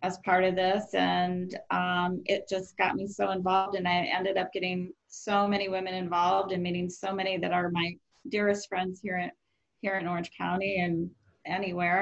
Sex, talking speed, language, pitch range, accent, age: female, 190 wpm, English, 175-195 Hz, American, 30-49